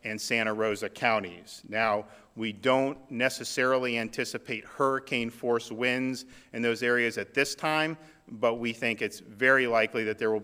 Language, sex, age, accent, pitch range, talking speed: English, male, 40-59, American, 110-130 Hz, 155 wpm